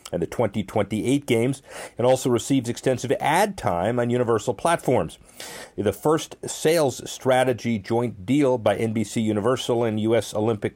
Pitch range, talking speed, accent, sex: 110-135 Hz, 140 wpm, American, male